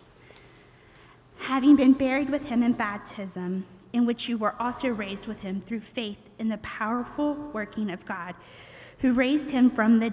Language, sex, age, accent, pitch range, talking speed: English, female, 20-39, American, 210-260 Hz, 165 wpm